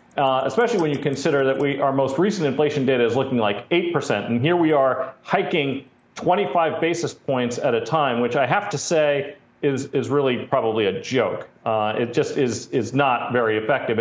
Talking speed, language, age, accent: 195 wpm, English, 40-59, American